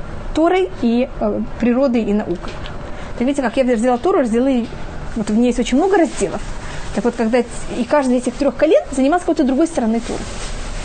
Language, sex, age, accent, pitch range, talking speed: Russian, female, 20-39, native, 240-315 Hz, 190 wpm